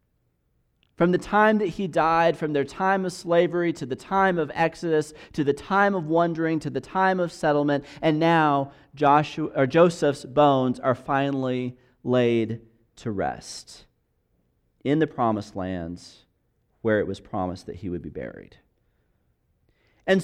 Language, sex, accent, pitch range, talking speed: English, male, American, 135-185 Hz, 145 wpm